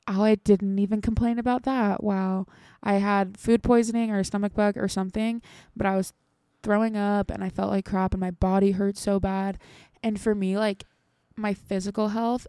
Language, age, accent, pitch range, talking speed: English, 20-39, American, 190-215 Hz, 195 wpm